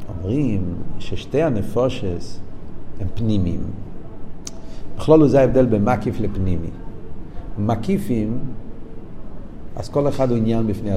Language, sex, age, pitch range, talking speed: Hebrew, male, 50-69, 105-155 Hz, 95 wpm